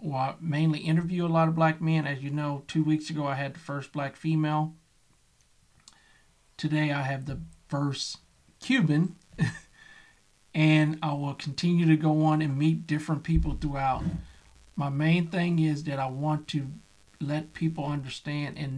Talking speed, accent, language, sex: 155 wpm, American, English, male